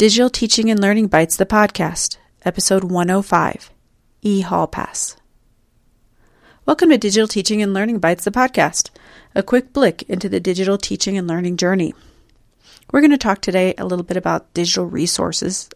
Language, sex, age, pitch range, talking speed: English, female, 40-59, 180-210 Hz, 155 wpm